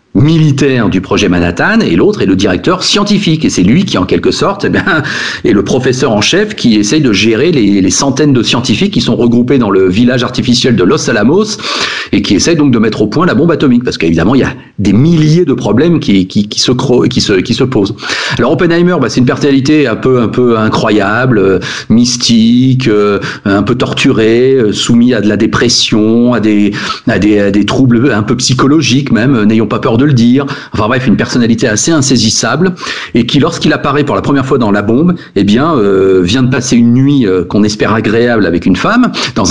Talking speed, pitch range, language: 225 wpm, 110-145 Hz, French